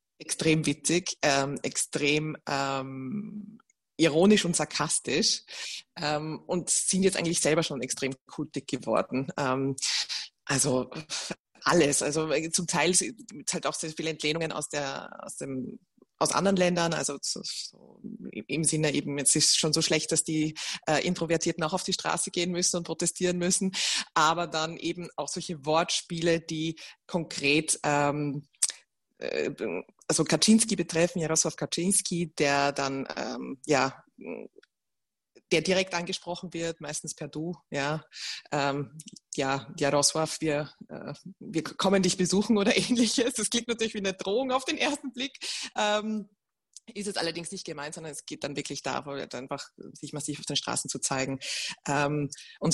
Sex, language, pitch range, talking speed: female, German, 145-180 Hz, 150 wpm